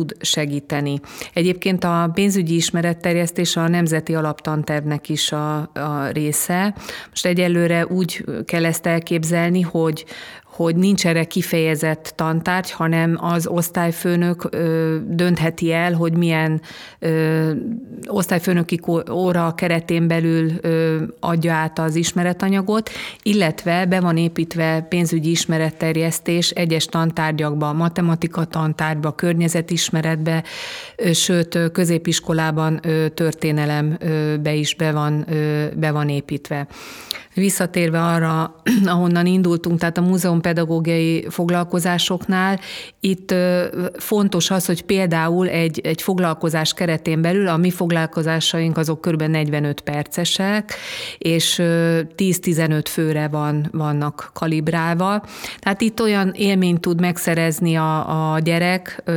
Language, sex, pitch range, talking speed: Hungarian, female, 160-175 Hz, 100 wpm